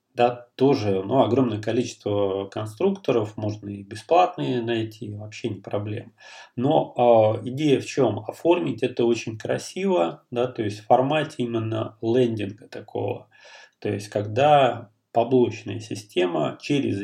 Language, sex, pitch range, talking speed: Russian, male, 105-125 Hz, 125 wpm